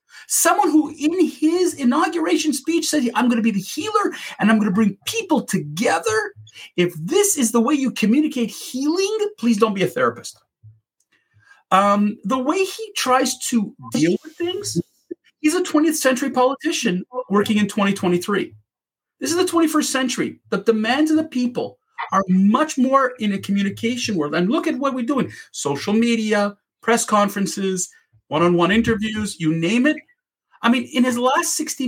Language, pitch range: English, 180-300 Hz